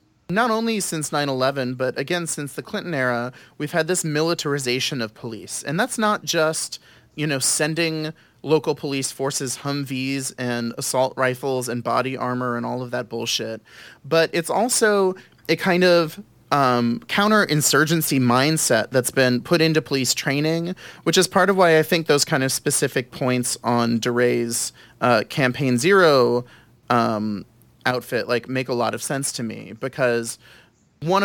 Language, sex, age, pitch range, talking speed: English, male, 30-49, 125-160 Hz, 155 wpm